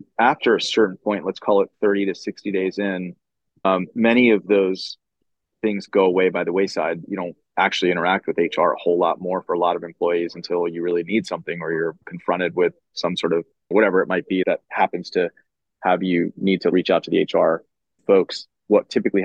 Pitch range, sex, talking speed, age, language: 90-100 Hz, male, 210 wpm, 20-39, English